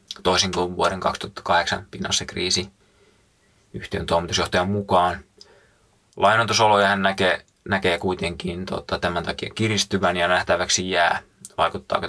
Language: Finnish